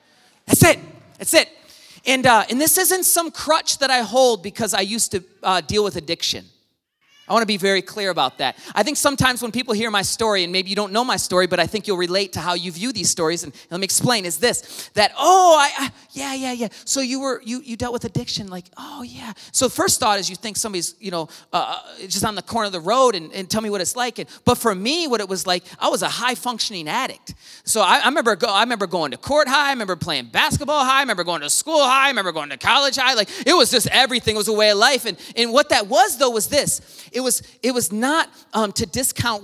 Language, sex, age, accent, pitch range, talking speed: English, male, 30-49, American, 195-265 Hz, 265 wpm